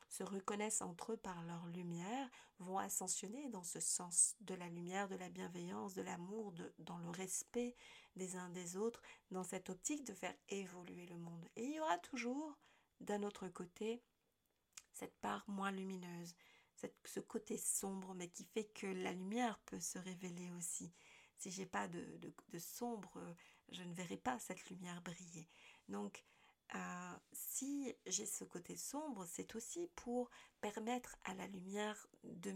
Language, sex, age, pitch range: French, female, 40-59, 175-220 Hz